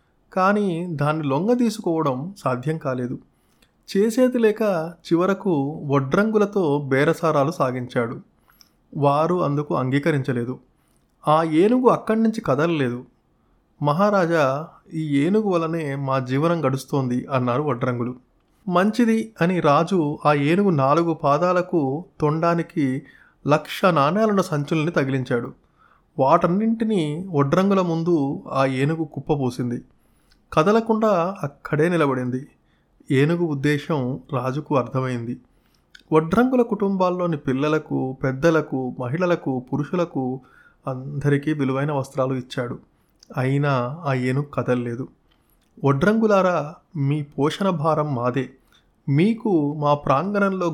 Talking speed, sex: 90 wpm, male